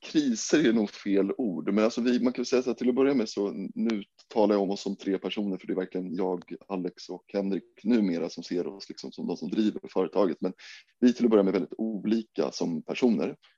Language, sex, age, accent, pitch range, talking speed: Swedish, male, 20-39, native, 95-110 Hz, 250 wpm